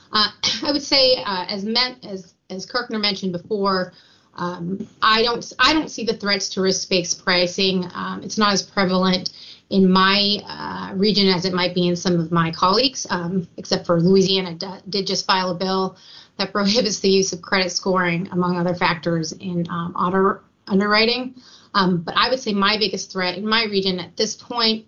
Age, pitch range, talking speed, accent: 30-49, 180-210 Hz, 190 wpm, American